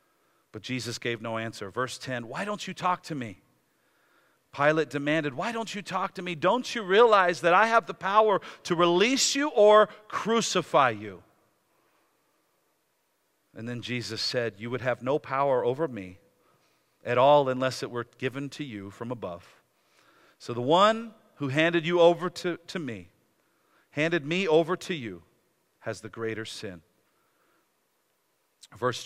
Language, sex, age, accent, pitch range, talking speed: English, male, 50-69, American, 130-185 Hz, 155 wpm